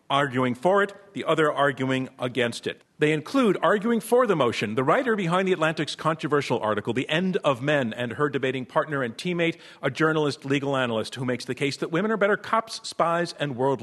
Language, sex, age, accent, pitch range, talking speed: English, male, 50-69, American, 140-185 Hz, 205 wpm